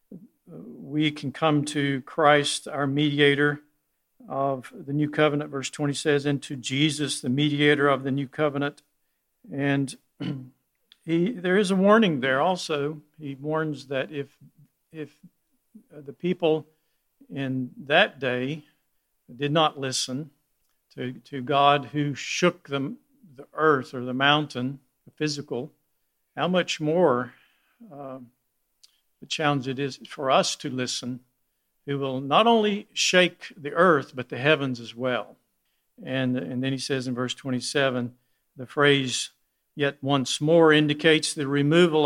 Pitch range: 135-155 Hz